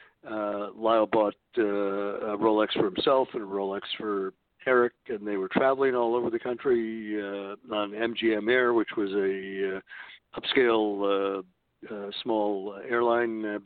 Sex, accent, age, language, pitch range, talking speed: male, American, 60-79, English, 105-135 Hz, 155 wpm